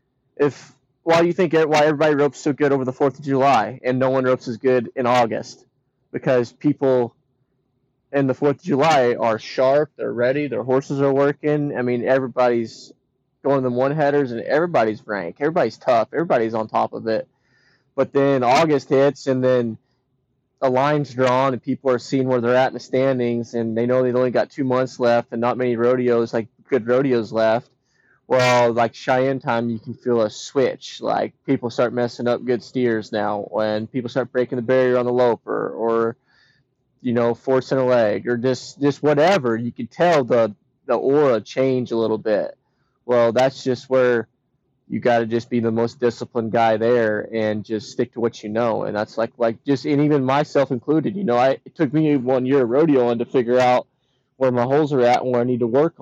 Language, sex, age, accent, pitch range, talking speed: English, male, 20-39, American, 120-135 Hz, 205 wpm